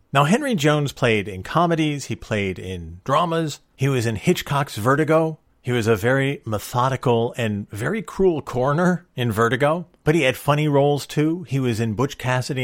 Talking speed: 175 wpm